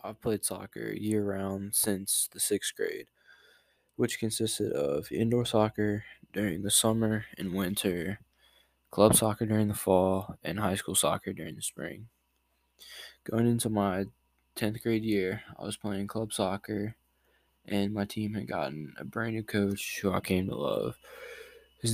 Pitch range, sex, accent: 95-110 Hz, male, American